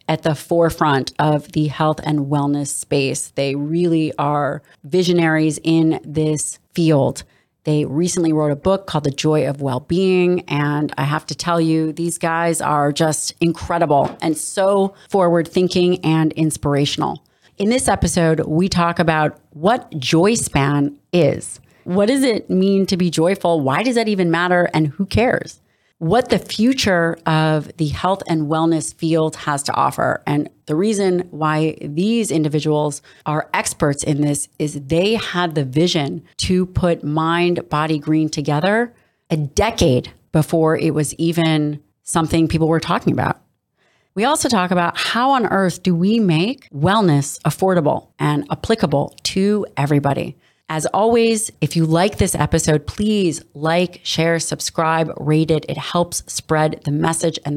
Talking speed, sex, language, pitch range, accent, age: 150 wpm, female, English, 150-180 Hz, American, 30-49